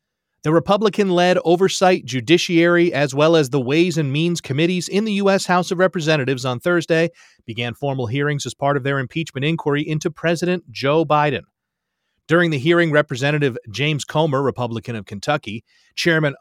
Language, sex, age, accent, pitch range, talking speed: English, male, 30-49, American, 120-165 Hz, 155 wpm